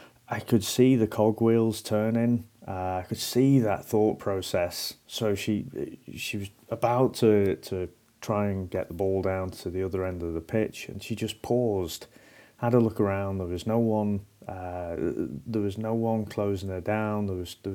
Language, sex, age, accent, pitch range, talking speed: English, male, 30-49, British, 95-110 Hz, 190 wpm